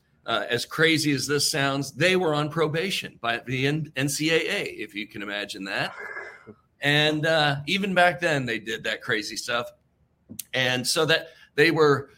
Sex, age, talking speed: male, 40-59, 170 wpm